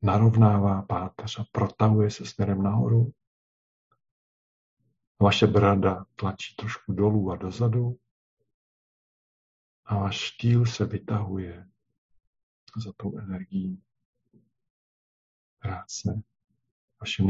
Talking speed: 85 wpm